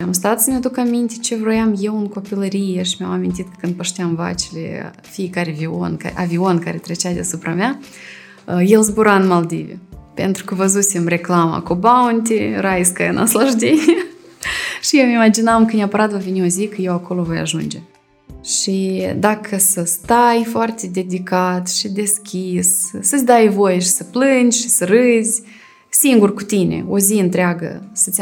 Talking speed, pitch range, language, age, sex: 160 wpm, 180-230 Hz, Romanian, 20-39, female